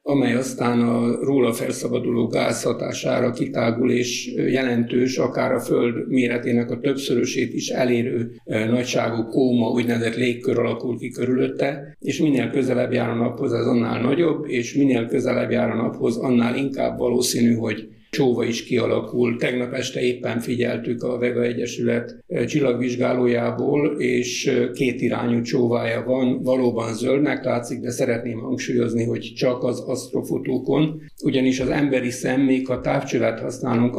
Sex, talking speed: male, 130 wpm